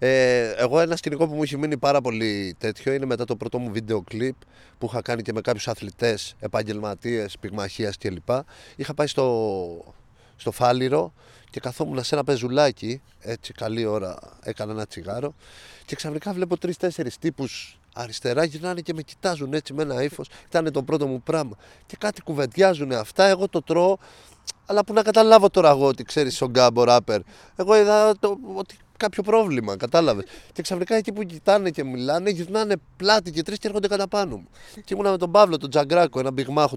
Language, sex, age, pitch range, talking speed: Greek, male, 30-49, 120-175 Hz, 185 wpm